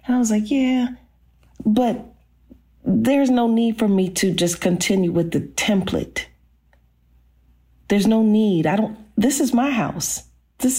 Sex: female